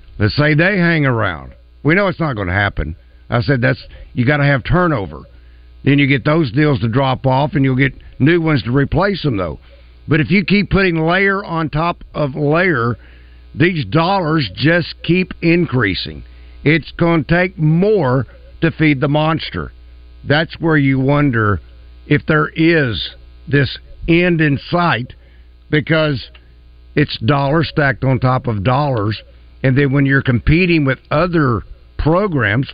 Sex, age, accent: male, 50-69, American